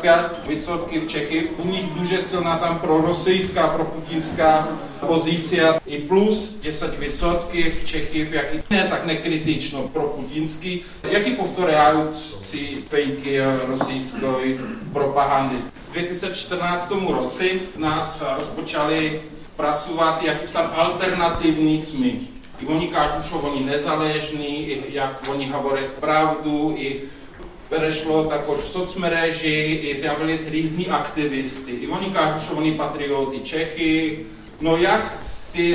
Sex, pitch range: male, 145-170 Hz